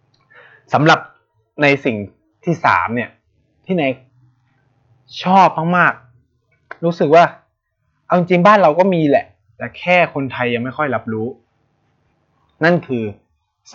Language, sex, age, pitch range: Thai, male, 20-39, 105-145 Hz